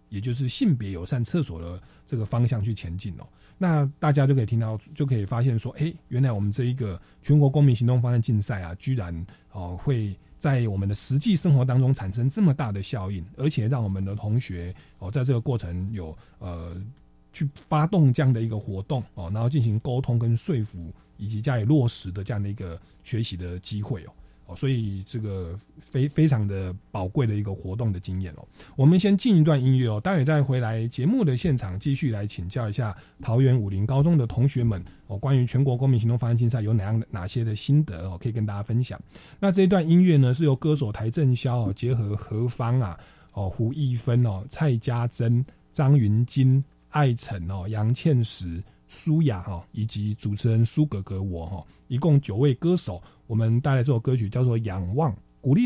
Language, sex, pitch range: Chinese, male, 100-135 Hz